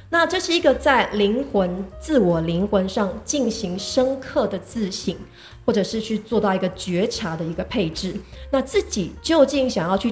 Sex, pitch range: female, 195-260 Hz